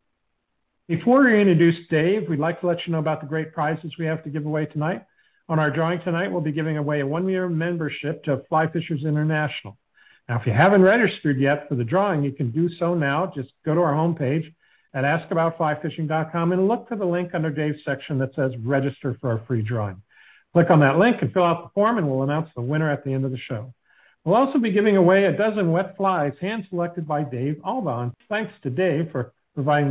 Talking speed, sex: 220 wpm, male